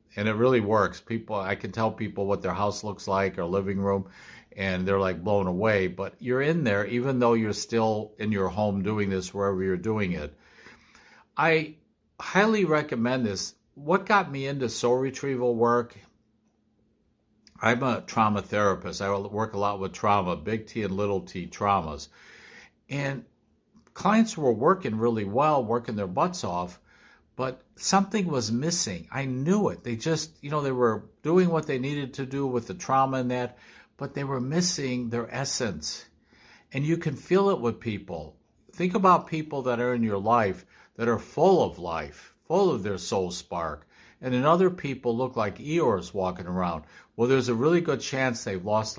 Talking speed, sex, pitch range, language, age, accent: 180 wpm, male, 100-135 Hz, English, 60-79, American